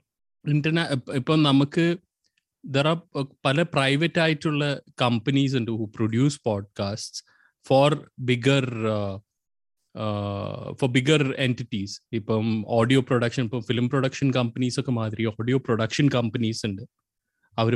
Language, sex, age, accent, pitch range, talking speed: Malayalam, male, 20-39, native, 110-140 Hz, 110 wpm